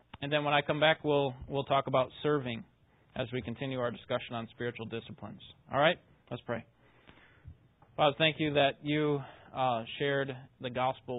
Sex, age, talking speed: male, 30-49, 170 wpm